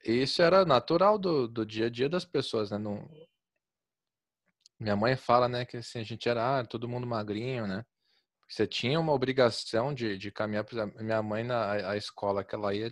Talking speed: 200 wpm